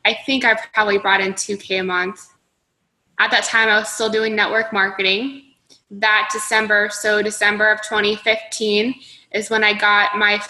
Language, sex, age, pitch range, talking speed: English, female, 20-39, 205-220 Hz, 165 wpm